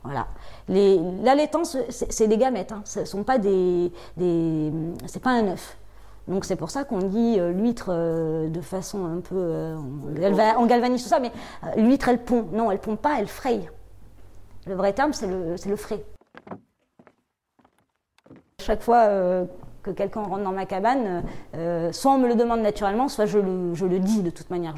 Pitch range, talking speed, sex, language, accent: 175-230 Hz, 190 wpm, female, French, French